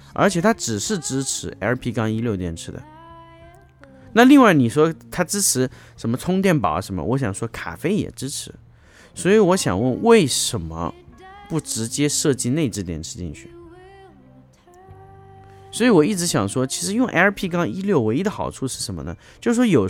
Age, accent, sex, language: 30-49, native, male, Chinese